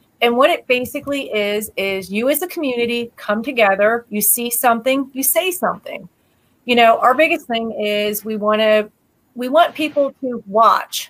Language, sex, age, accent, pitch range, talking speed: English, female, 40-59, American, 215-260 Hz, 175 wpm